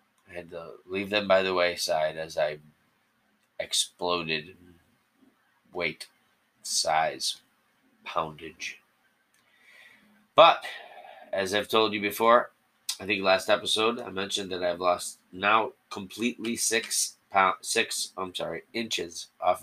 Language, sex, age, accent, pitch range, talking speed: English, male, 30-49, American, 90-110 Hz, 120 wpm